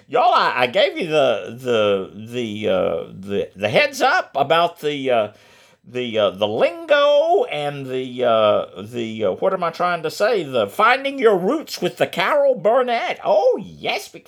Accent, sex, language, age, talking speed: American, male, English, 50-69, 170 wpm